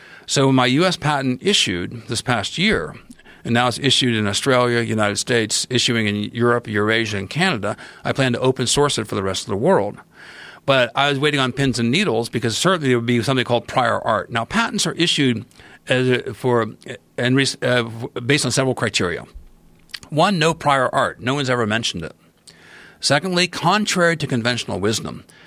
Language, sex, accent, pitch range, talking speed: English, male, American, 115-145 Hz, 185 wpm